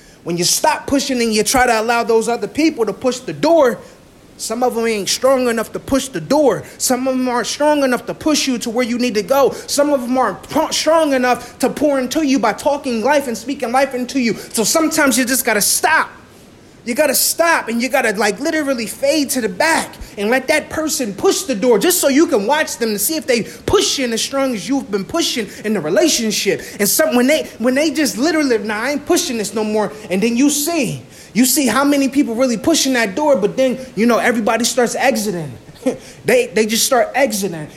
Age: 30-49